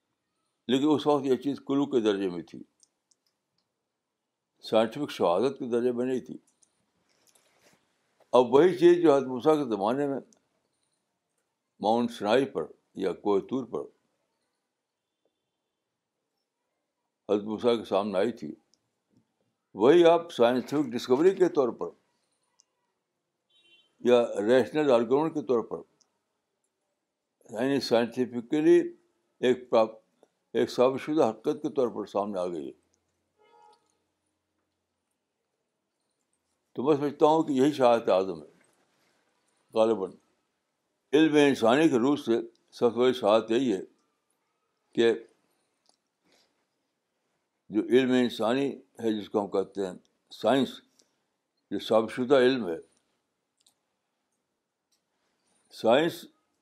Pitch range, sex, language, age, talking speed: 115-150 Hz, male, Urdu, 60-79, 90 wpm